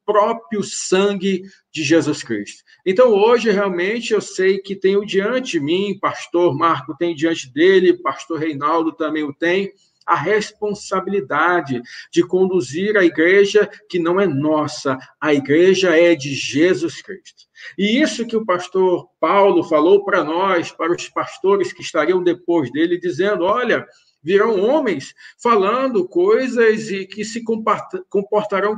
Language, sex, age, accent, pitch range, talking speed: Portuguese, male, 50-69, Brazilian, 170-225 Hz, 140 wpm